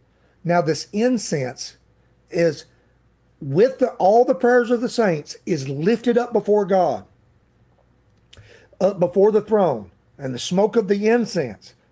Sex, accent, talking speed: male, American, 135 wpm